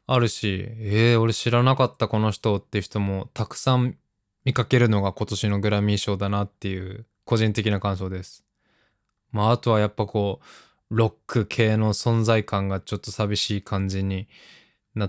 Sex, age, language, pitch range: male, 20-39, Japanese, 100-120 Hz